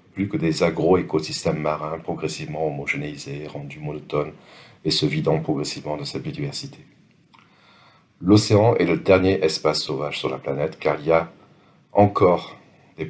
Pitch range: 80-110 Hz